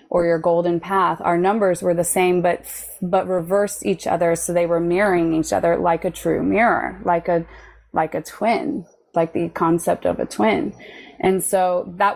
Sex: female